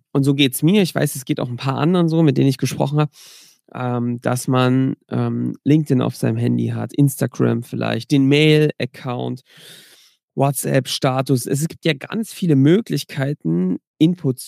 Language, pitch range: German, 135-165 Hz